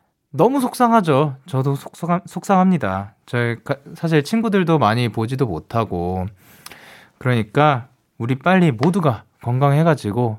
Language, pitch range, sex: Korean, 115-180 Hz, male